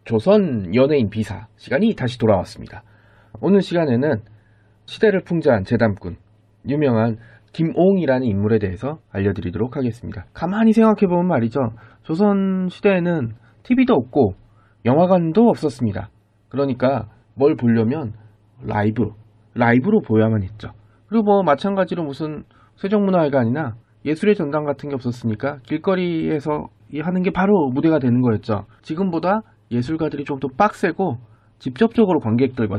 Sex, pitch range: male, 110-165 Hz